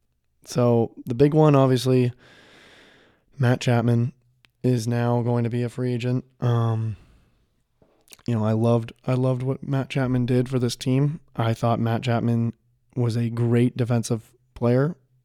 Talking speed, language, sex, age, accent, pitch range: 150 wpm, English, male, 20-39, American, 115-125 Hz